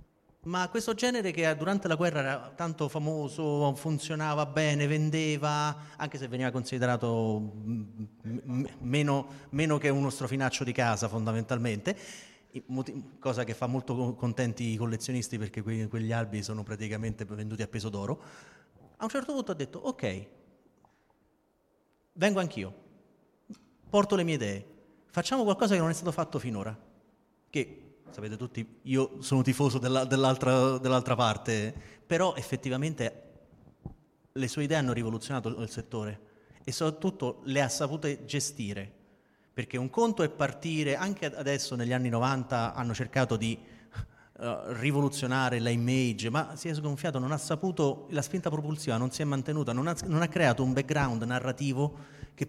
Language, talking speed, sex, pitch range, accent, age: Italian, 140 wpm, male, 120-155 Hz, native, 30-49